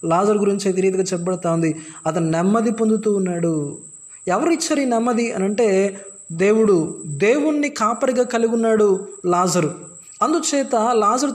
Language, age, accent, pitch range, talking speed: Telugu, 20-39, native, 195-245 Hz, 120 wpm